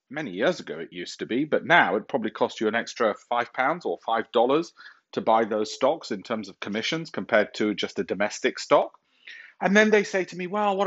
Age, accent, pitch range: 40-59, British, 105-165 Hz